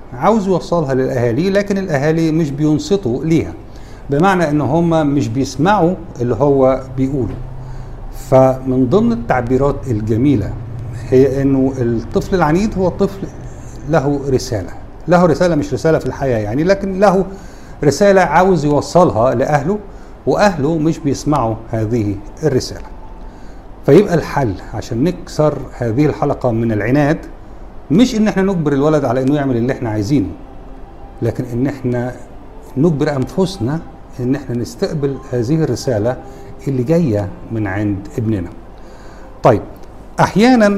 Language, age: Arabic, 50-69